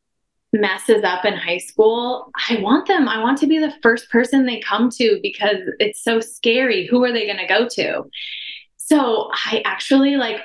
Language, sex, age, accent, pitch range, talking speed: English, female, 20-39, American, 195-260 Hz, 190 wpm